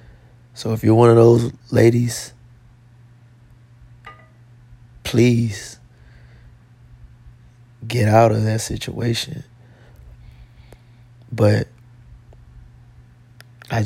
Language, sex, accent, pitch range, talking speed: English, male, American, 110-120 Hz, 65 wpm